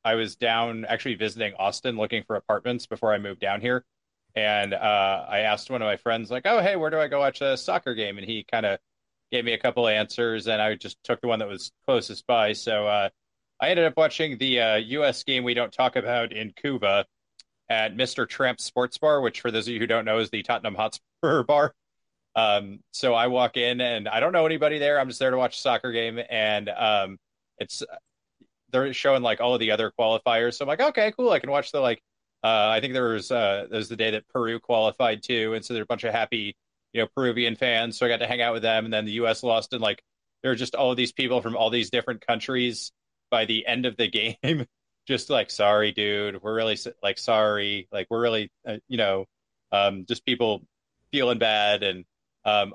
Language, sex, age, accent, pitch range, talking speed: English, male, 30-49, American, 110-125 Hz, 235 wpm